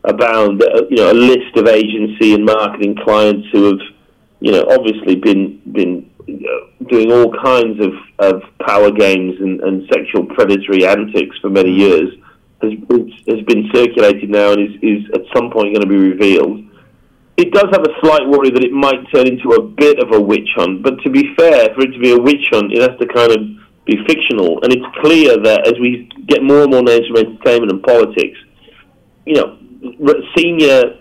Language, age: English, 40-59